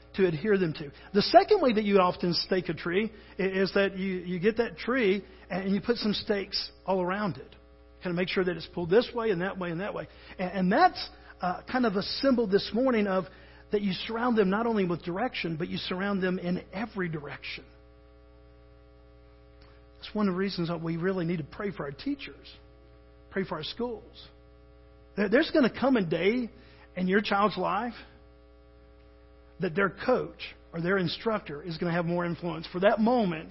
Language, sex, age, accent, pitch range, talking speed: English, male, 50-69, American, 160-215 Hz, 200 wpm